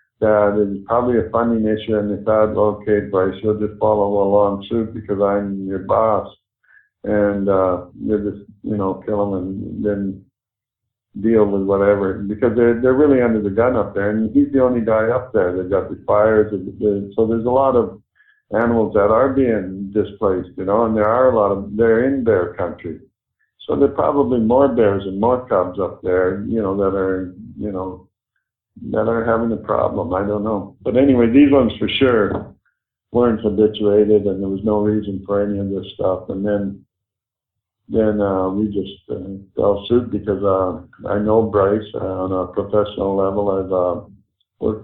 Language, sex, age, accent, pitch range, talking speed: English, male, 60-79, American, 100-110 Hz, 190 wpm